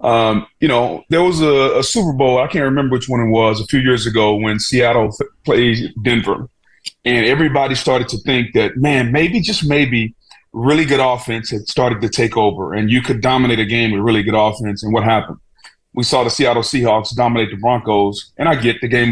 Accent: American